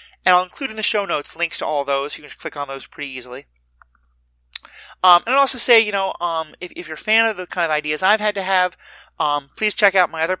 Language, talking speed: English, 270 wpm